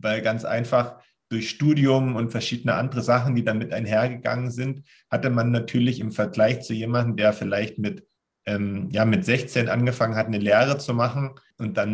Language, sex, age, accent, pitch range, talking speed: German, male, 40-59, German, 110-120 Hz, 175 wpm